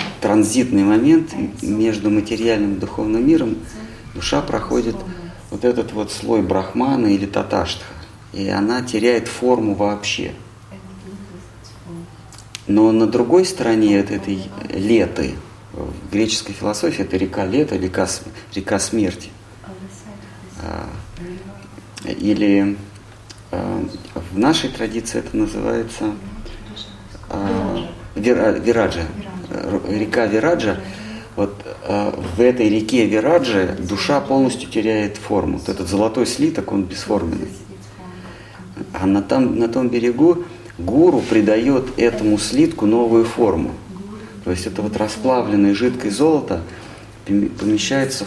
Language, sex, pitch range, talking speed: Russian, male, 100-115 Hz, 100 wpm